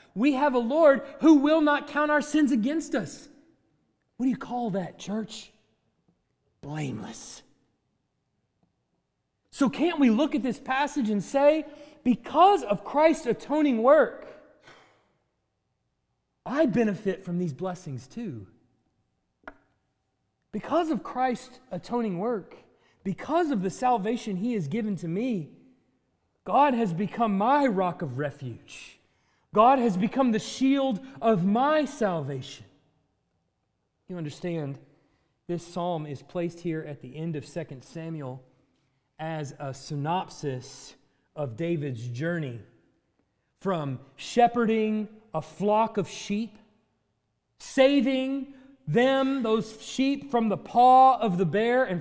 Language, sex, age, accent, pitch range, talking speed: English, male, 30-49, American, 160-265 Hz, 120 wpm